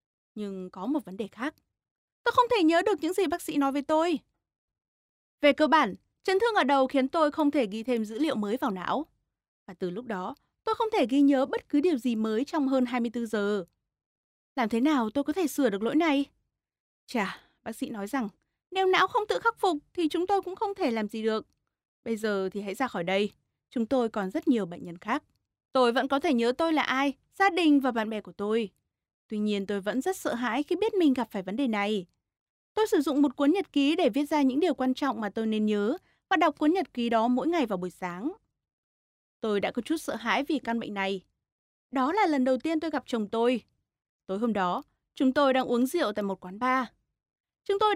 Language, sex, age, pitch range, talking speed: Vietnamese, female, 20-39, 225-320 Hz, 240 wpm